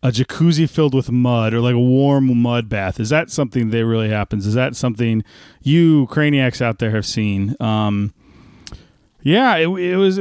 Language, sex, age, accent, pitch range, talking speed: English, male, 30-49, American, 120-160 Hz, 175 wpm